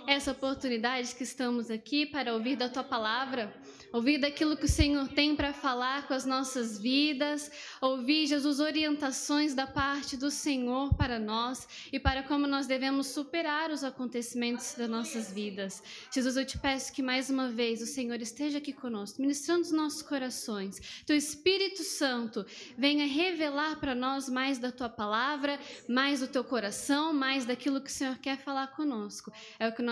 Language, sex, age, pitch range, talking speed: Portuguese, female, 10-29, 230-290 Hz, 175 wpm